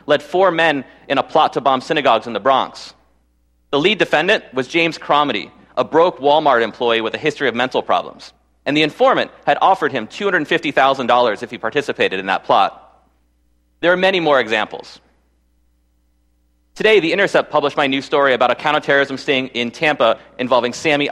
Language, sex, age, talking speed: English, male, 40-59, 175 wpm